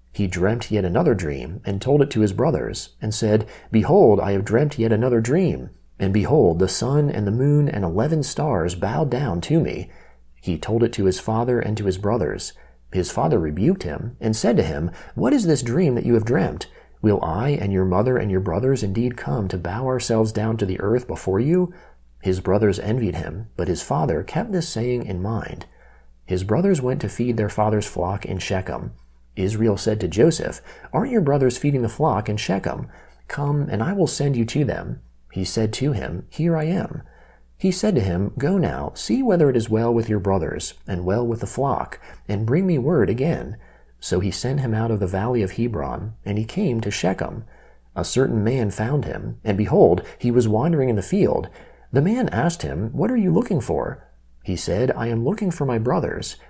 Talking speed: 210 wpm